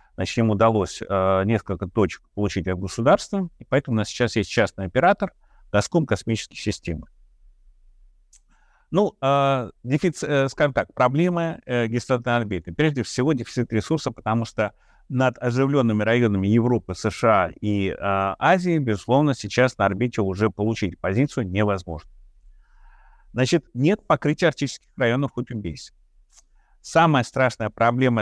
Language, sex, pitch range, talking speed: Russian, male, 100-135 Hz, 130 wpm